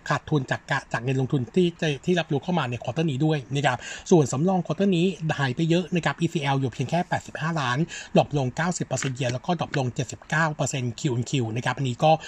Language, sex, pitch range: Thai, male, 130-165 Hz